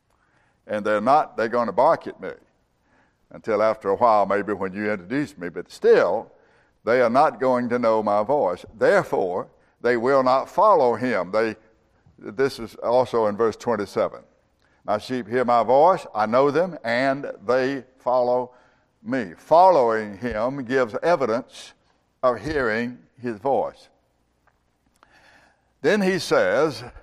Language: English